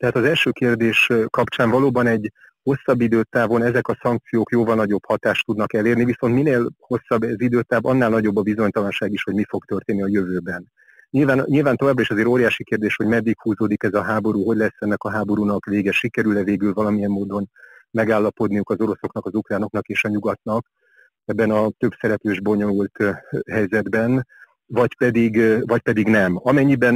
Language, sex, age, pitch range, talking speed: Hungarian, male, 40-59, 105-120 Hz, 170 wpm